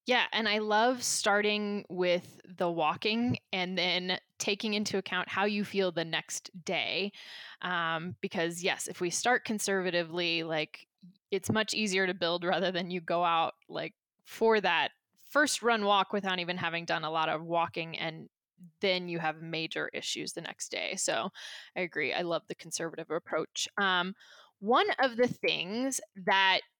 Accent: American